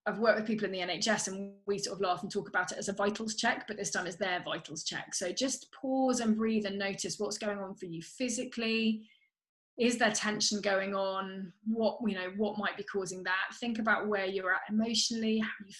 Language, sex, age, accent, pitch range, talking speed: English, female, 20-39, British, 190-230 Hz, 235 wpm